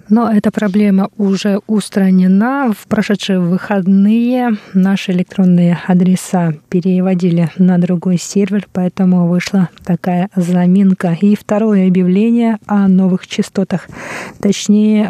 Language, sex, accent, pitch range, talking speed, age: Russian, female, native, 185-210 Hz, 105 wpm, 20-39